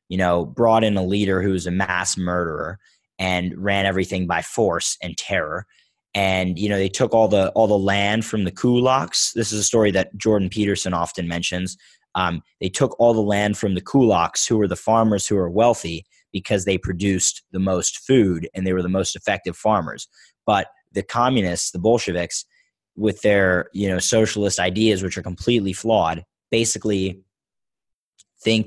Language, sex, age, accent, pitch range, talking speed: English, male, 20-39, American, 90-110 Hz, 180 wpm